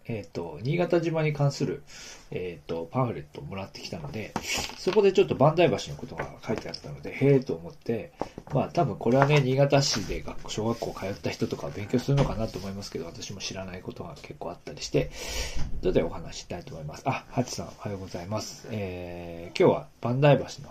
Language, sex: Japanese, male